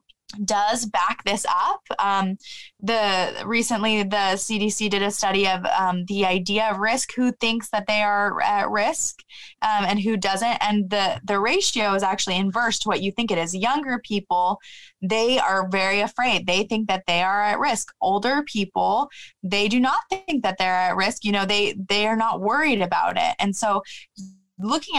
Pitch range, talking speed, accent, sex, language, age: 190-235 Hz, 185 wpm, American, female, English, 20-39